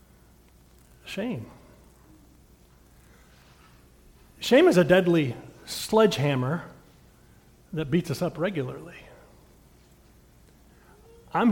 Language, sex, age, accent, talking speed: English, male, 40-59, American, 65 wpm